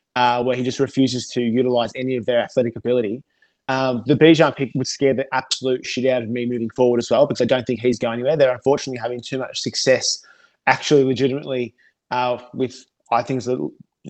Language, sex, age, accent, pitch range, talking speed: English, male, 20-39, Australian, 120-135 Hz, 215 wpm